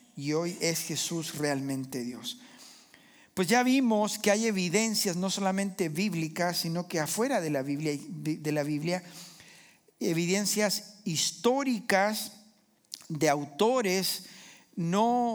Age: 50-69